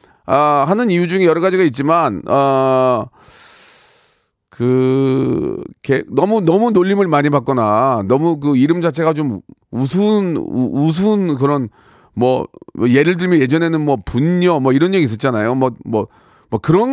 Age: 40-59